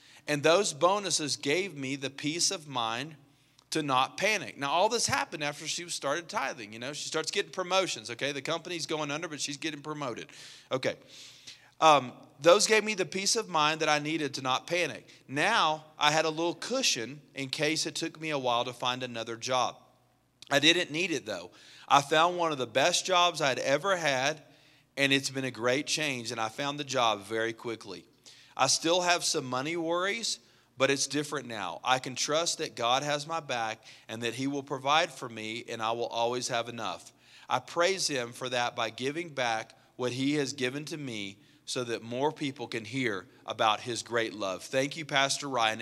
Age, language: 40-59, English